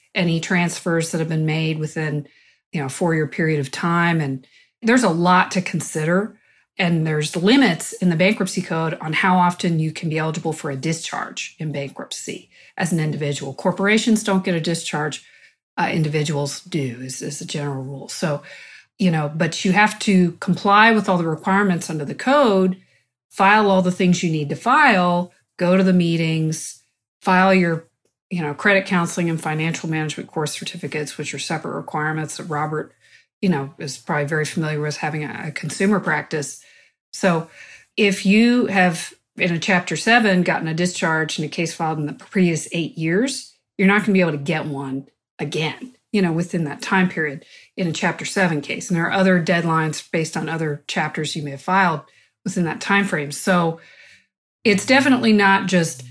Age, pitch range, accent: 40-59, 155-190 Hz, American